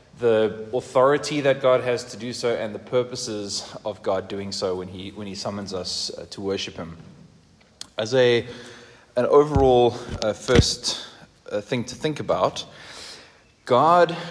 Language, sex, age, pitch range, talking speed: English, male, 20-39, 105-125 Hz, 150 wpm